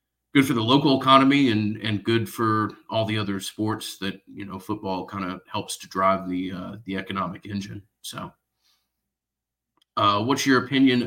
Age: 30-49